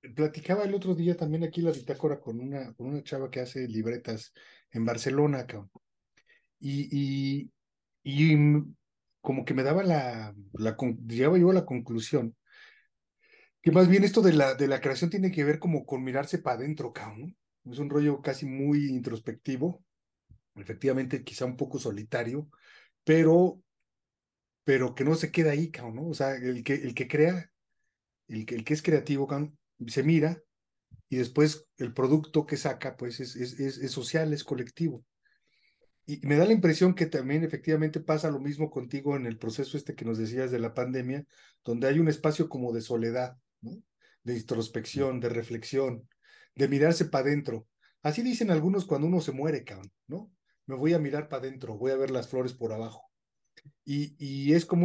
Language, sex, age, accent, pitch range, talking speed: Spanish, male, 40-59, Mexican, 125-155 Hz, 180 wpm